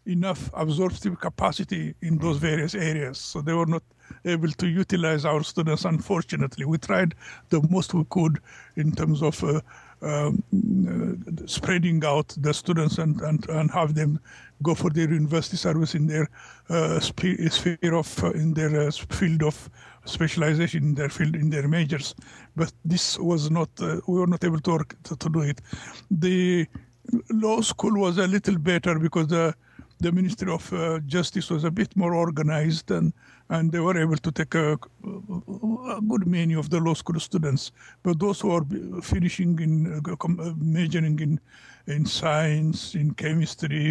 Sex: male